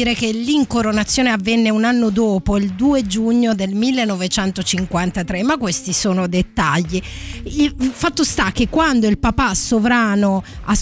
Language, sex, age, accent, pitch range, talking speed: Italian, female, 30-49, native, 205-260 Hz, 135 wpm